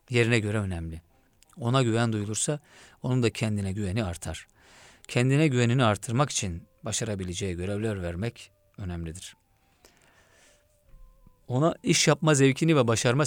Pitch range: 95-125 Hz